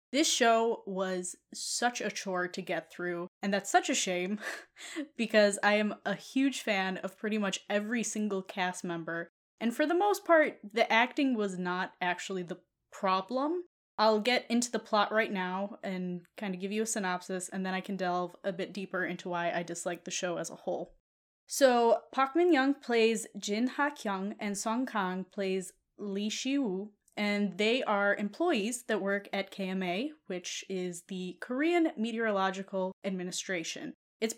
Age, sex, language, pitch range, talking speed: 10-29, female, English, 185-230 Hz, 175 wpm